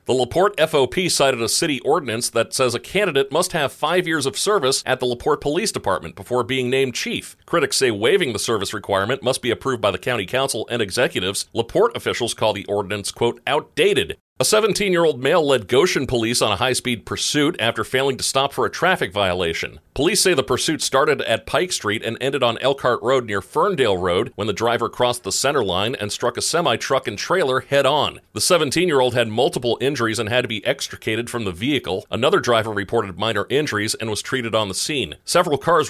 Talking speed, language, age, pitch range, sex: 205 wpm, English, 40-59, 110-145 Hz, male